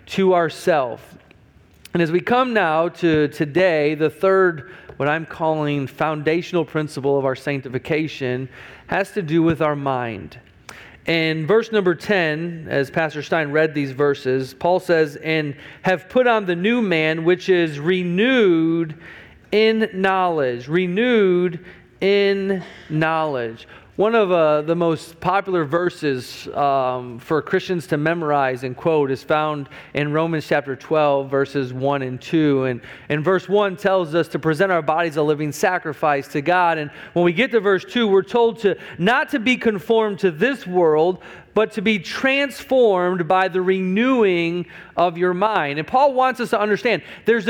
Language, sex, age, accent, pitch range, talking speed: English, male, 40-59, American, 150-200 Hz, 160 wpm